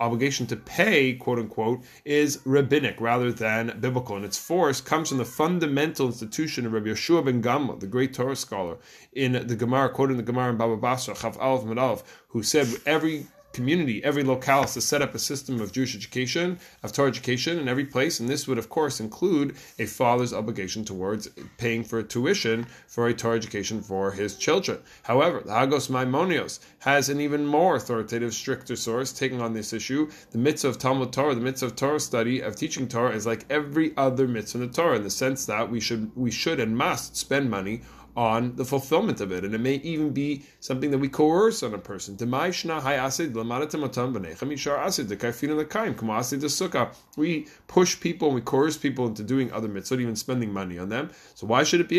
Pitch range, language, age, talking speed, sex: 115-145 Hz, English, 30-49, 190 wpm, male